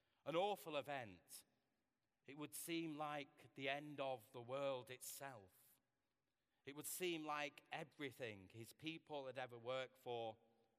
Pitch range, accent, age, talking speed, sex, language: 110-140 Hz, British, 40-59, 135 wpm, male, English